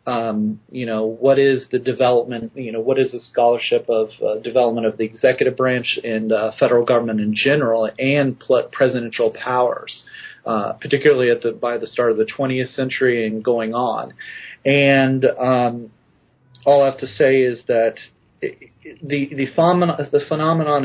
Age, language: 40-59, English